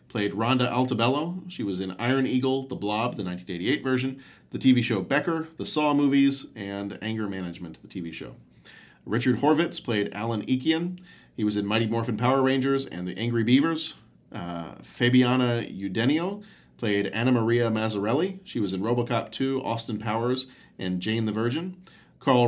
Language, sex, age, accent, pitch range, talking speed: English, male, 40-59, American, 105-130 Hz, 165 wpm